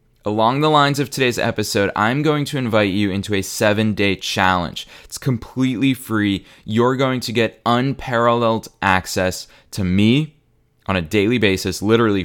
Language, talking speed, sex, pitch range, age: English, 150 wpm, male, 95-120 Hz, 20-39